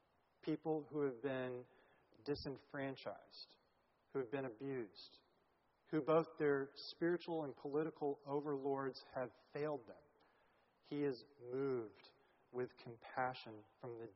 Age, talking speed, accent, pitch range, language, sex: 40-59, 110 wpm, American, 130-155 Hz, English, male